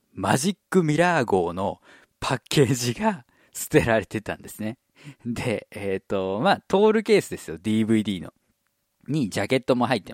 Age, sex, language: 50-69, male, Japanese